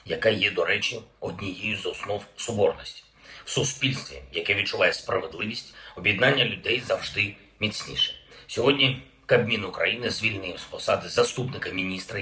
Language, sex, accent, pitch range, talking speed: Ukrainian, male, native, 100-130 Hz, 125 wpm